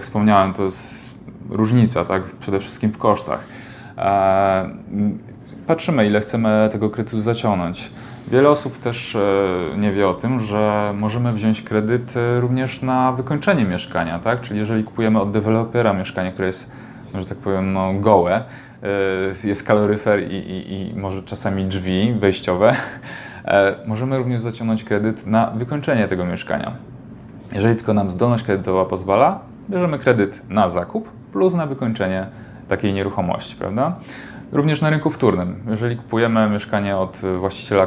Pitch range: 95-120 Hz